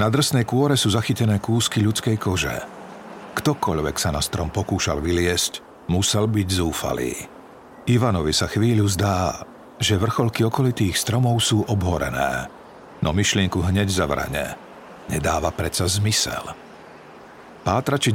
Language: Slovak